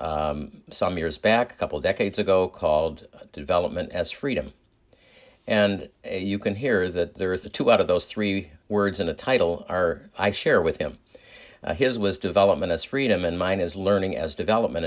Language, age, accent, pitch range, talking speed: English, 50-69, American, 90-120 Hz, 185 wpm